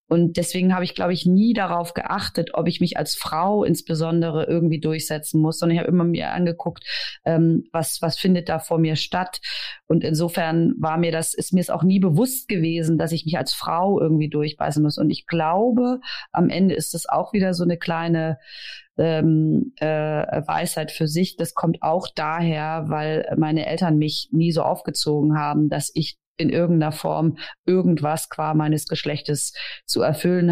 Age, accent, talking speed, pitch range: 30-49, German, 180 wpm, 155-175 Hz